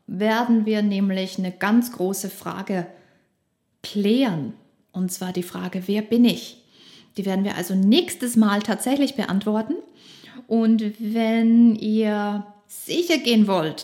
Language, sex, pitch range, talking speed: German, female, 210-270 Hz, 125 wpm